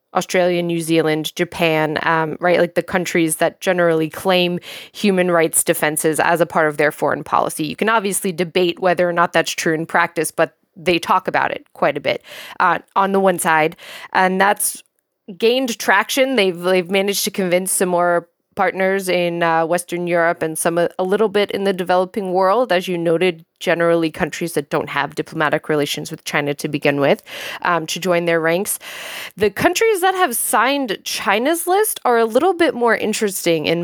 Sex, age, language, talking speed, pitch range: female, 20-39, English, 185 wpm, 165-195 Hz